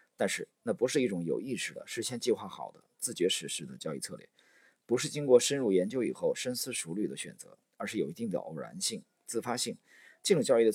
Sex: male